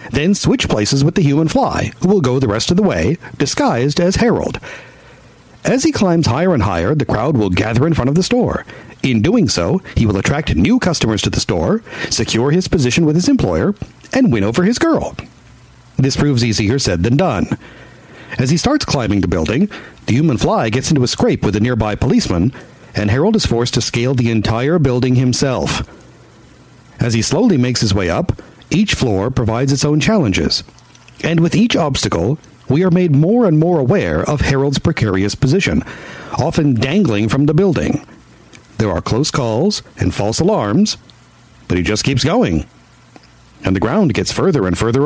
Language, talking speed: English, 185 wpm